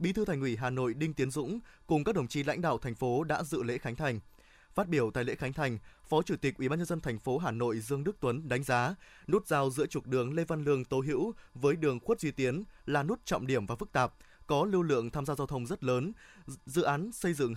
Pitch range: 130-160 Hz